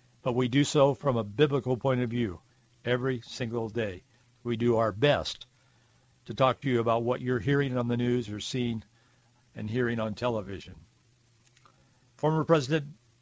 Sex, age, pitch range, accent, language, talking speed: male, 60-79, 120-155 Hz, American, English, 165 wpm